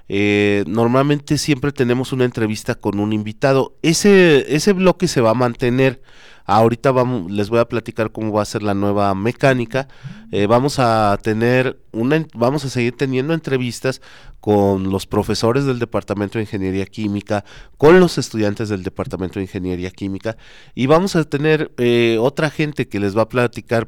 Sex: male